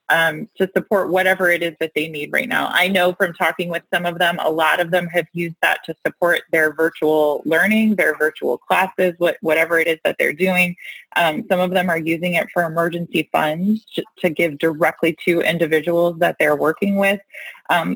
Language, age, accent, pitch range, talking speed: English, 20-39, American, 170-200 Hz, 200 wpm